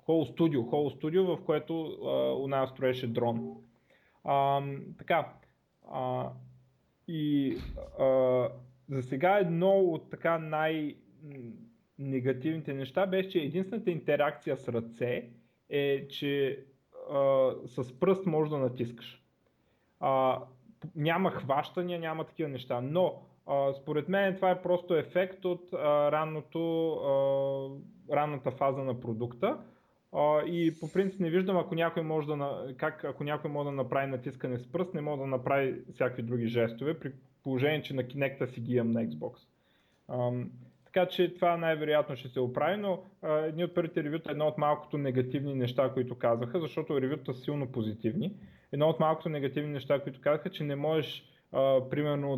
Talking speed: 145 wpm